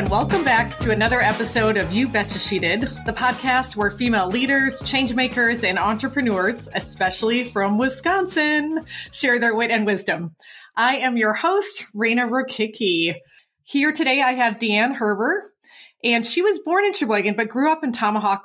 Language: English